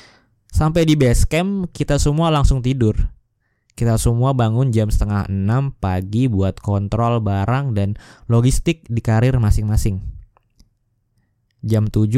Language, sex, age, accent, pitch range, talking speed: Indonesian, male, 20-39, native, 110-120 Hz, 120 wpm